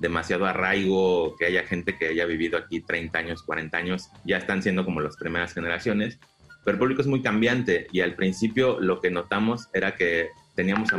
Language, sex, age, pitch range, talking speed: Spanish, male, 30-49, 90-105 Hz, 195 wpm